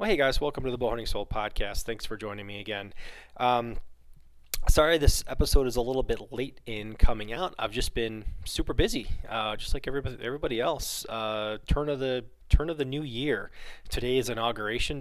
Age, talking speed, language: 20-39, 195 wpm, English